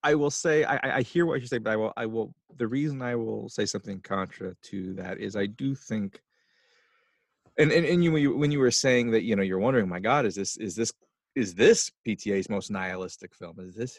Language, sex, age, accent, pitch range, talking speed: English, male, 30-49, American, 100-125 Hz, 230 wpm